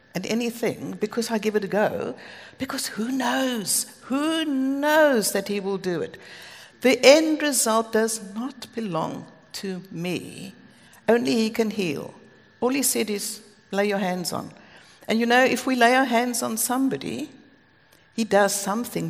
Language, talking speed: English, 155 wpm